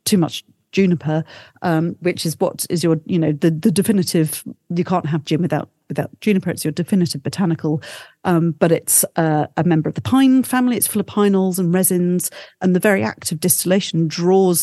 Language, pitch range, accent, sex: English, 160-195 Hz, British, female